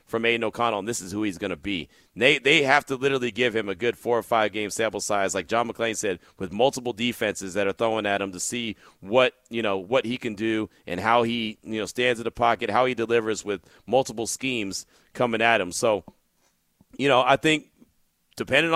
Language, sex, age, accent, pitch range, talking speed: English, male, 40-59, American, 110-135 Hz, 225 wpm